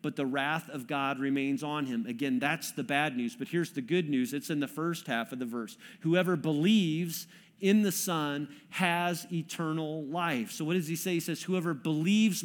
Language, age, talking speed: English, 40-59, 205 wpm